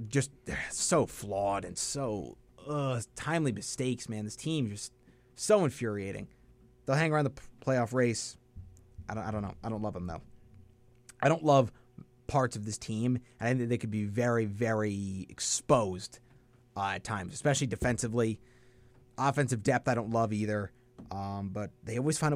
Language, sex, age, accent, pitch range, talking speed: English, male, 30-49, American, 110-150 Hz, 170 wpm